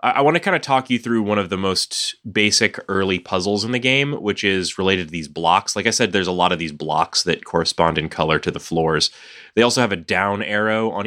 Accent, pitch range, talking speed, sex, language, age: American, 90-120 Hz, 255 wpm, male, English, 30-49